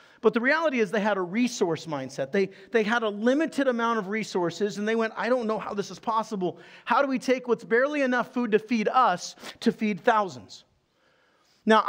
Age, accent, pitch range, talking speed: 40-59, American, 205-255 Hz, 210 wpm